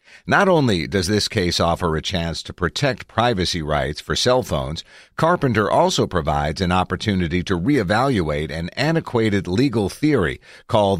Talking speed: 145 wpm